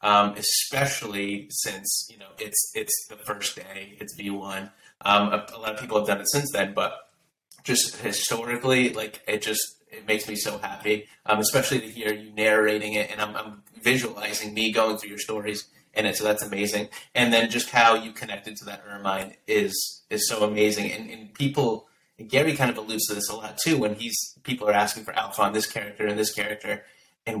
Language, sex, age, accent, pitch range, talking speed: English, male, 30-49, American, 105-115 Hz, 205 wpm